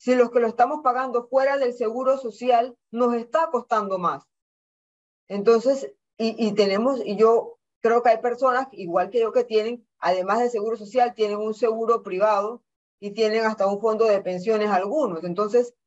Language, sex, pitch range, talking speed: Spanish, female, 200-250 Hz, 175 wpm